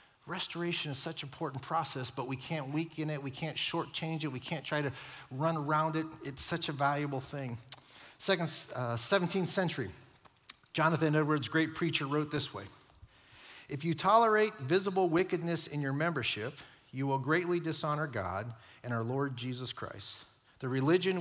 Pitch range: 125-160 Hz